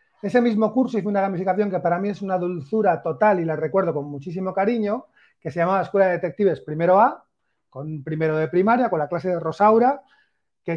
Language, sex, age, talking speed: Spanish, male, 40-59, 205 wpm